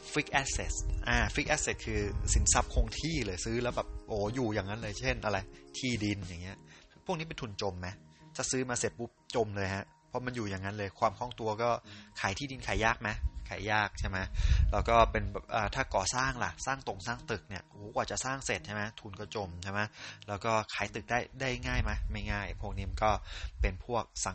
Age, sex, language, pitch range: 20-39, male, English, 95-120 Hz